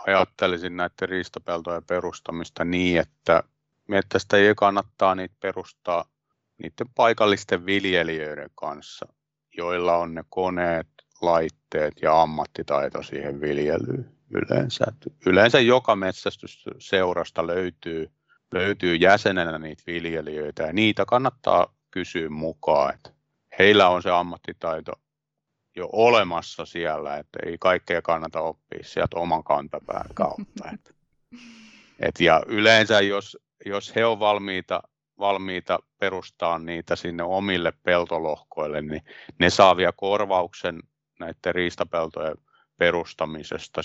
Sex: male